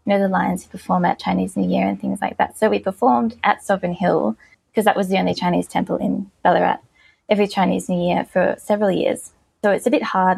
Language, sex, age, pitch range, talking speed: English, female, 20-39, 175-240 Hz, 230 wpm